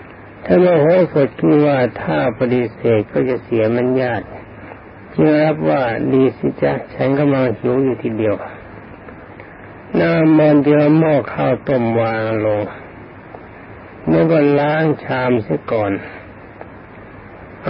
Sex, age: male, 60-79